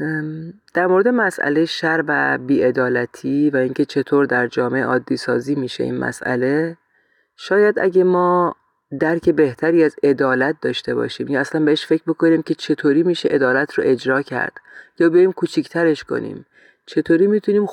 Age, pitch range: 30-49, 135-165 Hz